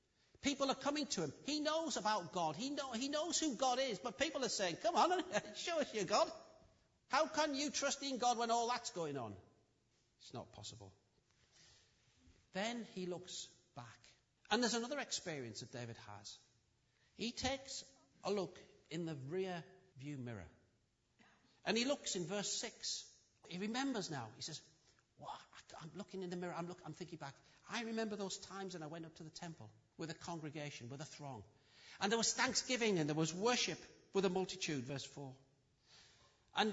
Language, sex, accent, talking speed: English, male, British, 180 wpm